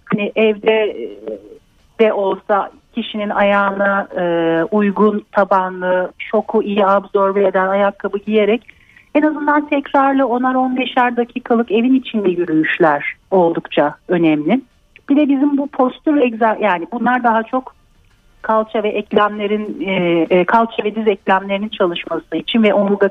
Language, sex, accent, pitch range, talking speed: Turkish, female, native, 200-245 Hz, 120 wpm